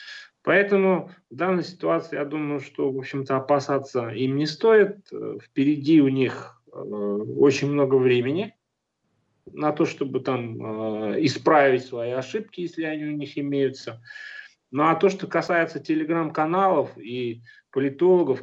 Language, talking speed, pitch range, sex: Russian, 125 wpm, 125-170 Hz, male